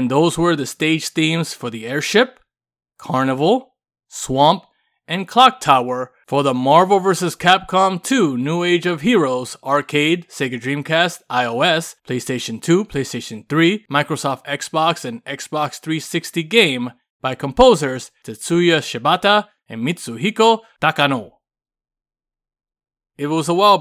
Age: 20-39